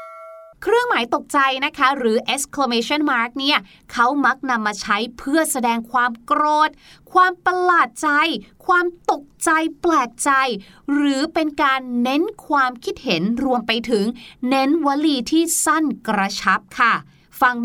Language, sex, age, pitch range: Thai, female, 30-49, 230-330 Hz